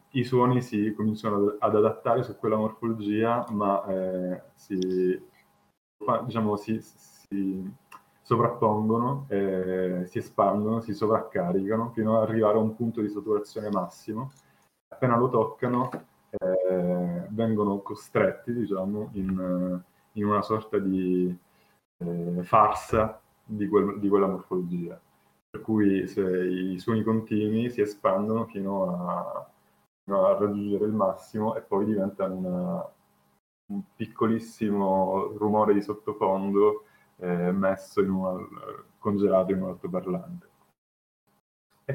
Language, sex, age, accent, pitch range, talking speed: Italian, male, 20-39, native, 95-110 Hz, 115 wpm